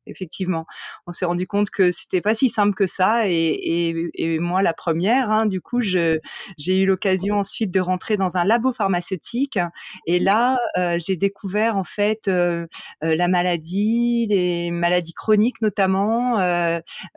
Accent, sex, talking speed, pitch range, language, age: French, female, 160 wpm, 170-205 Hz, French, 30-49